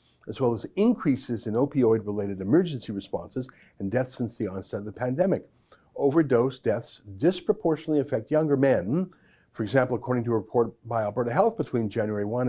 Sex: male